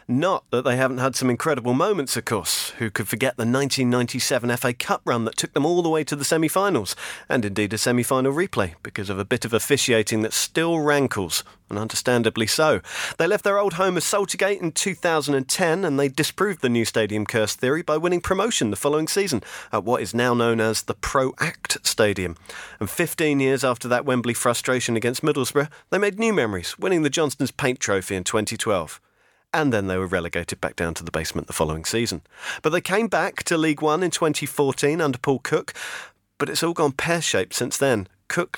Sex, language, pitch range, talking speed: male, English, 110-150 Hz, 200 wpm